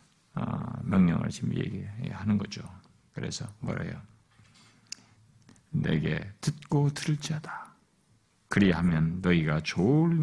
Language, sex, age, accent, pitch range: Korean, male, 50-69, native, 105-150 Hz